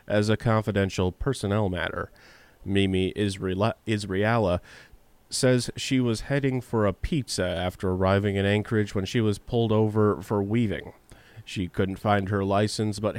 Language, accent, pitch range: English, American, 95-110 Hz